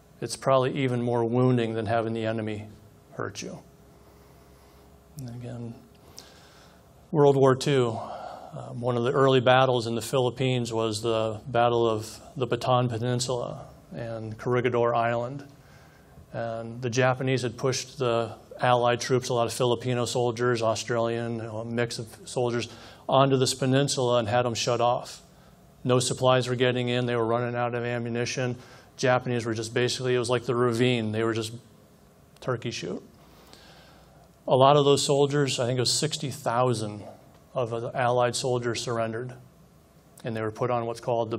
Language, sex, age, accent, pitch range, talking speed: English, male, 40-59, American, 115-130 Hz, 155 wpm